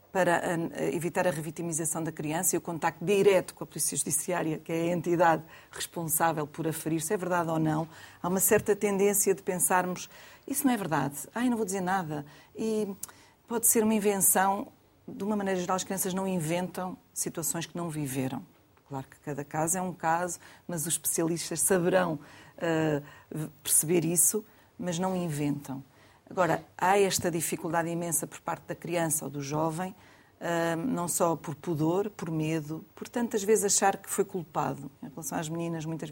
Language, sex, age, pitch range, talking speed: Portuguese, female, 40-59, 160-185 Hz, 170 wpm